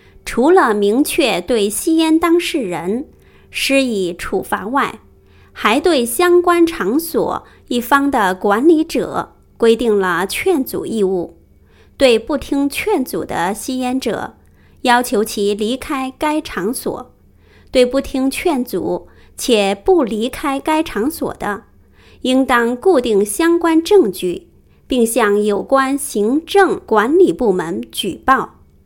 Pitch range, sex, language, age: 210-310 Hz, female, English, 20-39